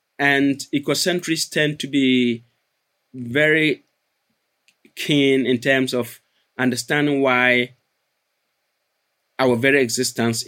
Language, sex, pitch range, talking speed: English, male, 115-140 Hz, 85 wpm